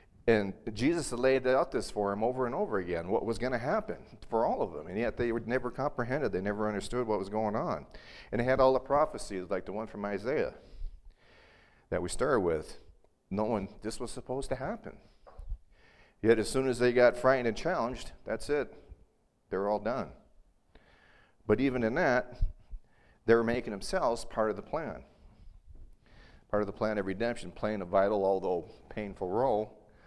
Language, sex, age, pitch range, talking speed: English, male, 40-59, 95-115 Hz, 185 wpm